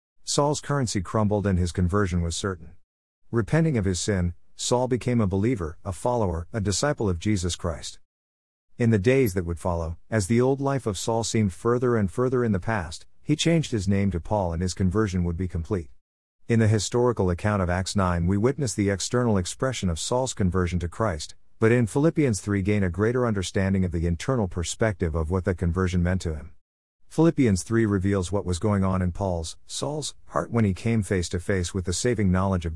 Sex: male